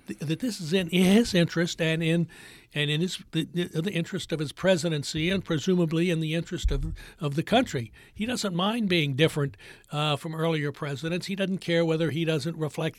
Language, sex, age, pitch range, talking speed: English, male, 60-79, 150-180 Hz, 195 wpm